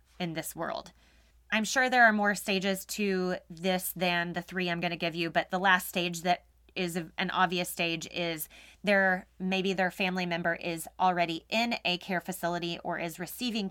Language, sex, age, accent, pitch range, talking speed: English, female, 20-39, American, 170-200 Hz, 185 wpm